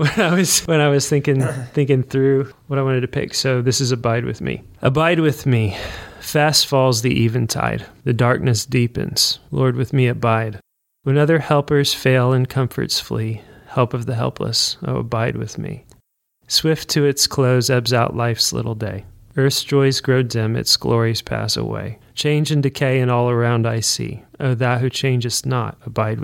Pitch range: 120-145 Hz